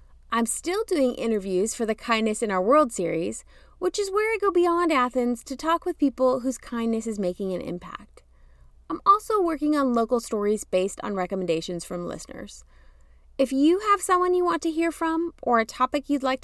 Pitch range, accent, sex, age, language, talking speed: 210-330 Hz, American, female, 30-49, English, 195 wpm